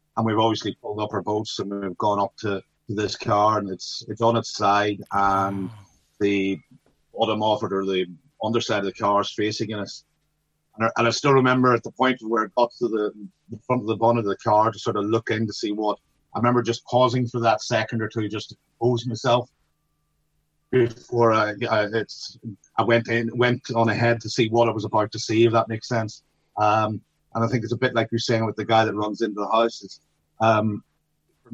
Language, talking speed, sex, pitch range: English, 230 wpm, male, 105-120 Hz